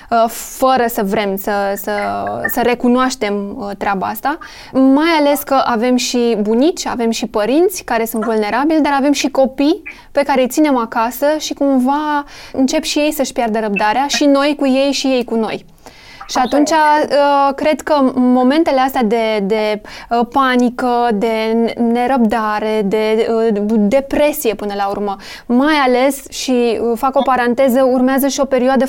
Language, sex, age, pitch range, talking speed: Romanian, female, 20-39, 230-285 Hz, 150 wpm